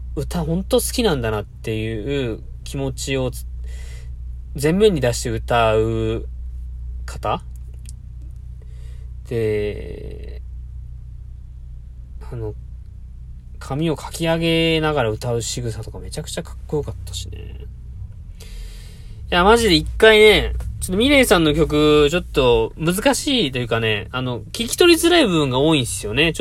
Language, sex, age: Japanese, male, 20-39